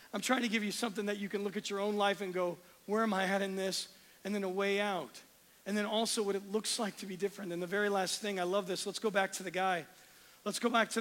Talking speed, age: 300 wpm, 40-59